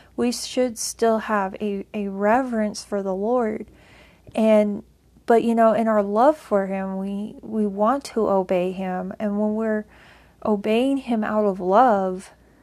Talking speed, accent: 155 wpm, American